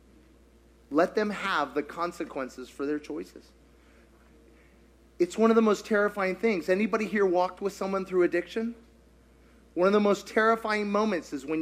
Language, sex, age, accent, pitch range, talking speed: English, male, 30-49, American, 145-220 Hz, 155 wpm